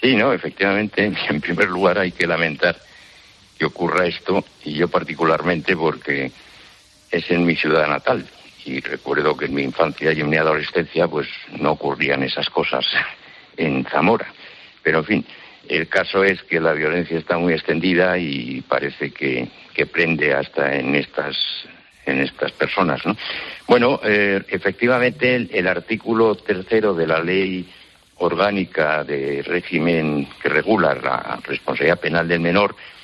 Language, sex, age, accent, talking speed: Spanish, male, 60-79, Spanish, 150 wpm